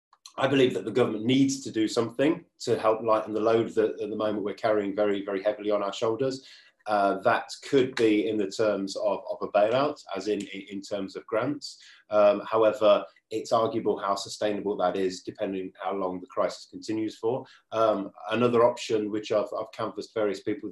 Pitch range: 100-120 Hz